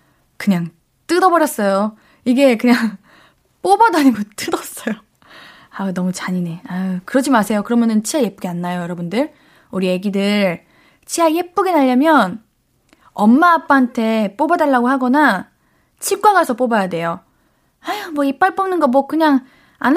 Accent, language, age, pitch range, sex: native, Korean, 20-39, 205-295 Hz, female